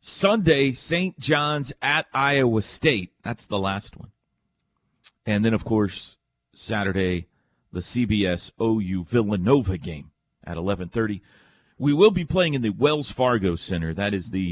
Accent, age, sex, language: American, 40-59, male, English